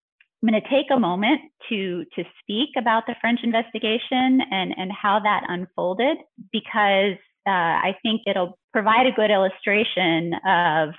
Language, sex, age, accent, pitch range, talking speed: English, female, 30-49, American, 170-220 Hz, 155 wpm